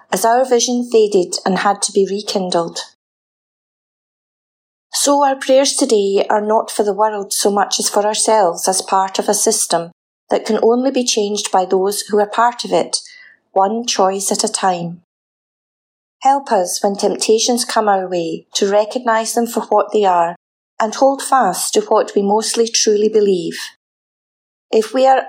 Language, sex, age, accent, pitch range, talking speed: English, female, 30-49, British, 195-235 Hz, 170 wpm